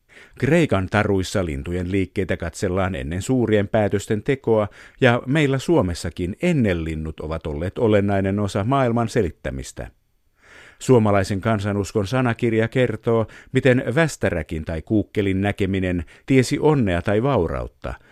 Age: 50-69